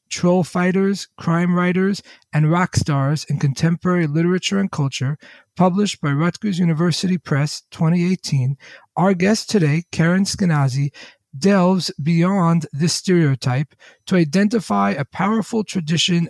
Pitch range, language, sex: 145-185 Hz, English, male